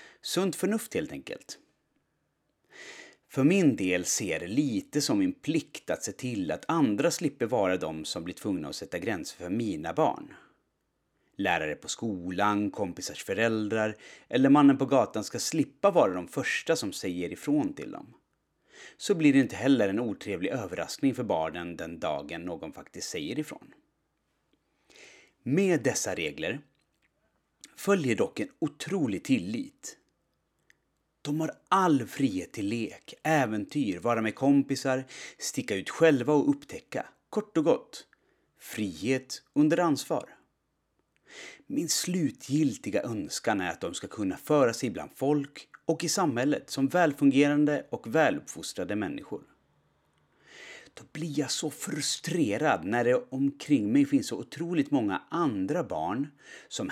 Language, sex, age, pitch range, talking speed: Swedish, male, 30-49, 125-195 Hz, 135 wpm